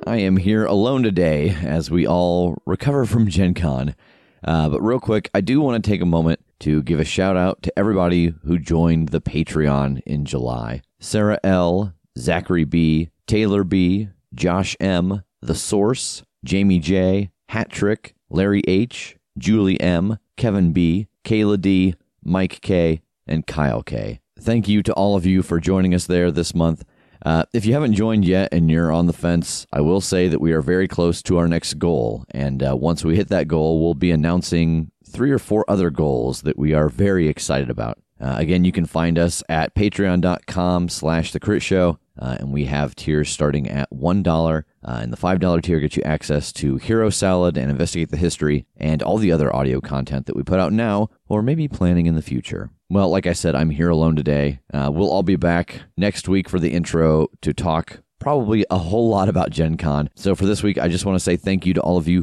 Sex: male